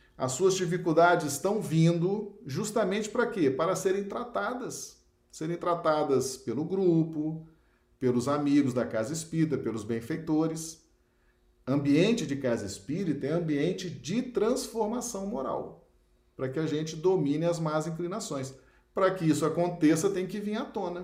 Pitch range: 130-190 Hz